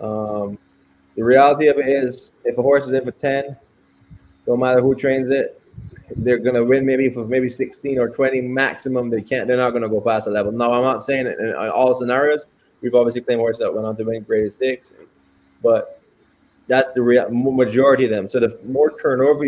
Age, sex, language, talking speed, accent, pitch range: 20-39, male, English, 210 wpm, American, 115-130 Hz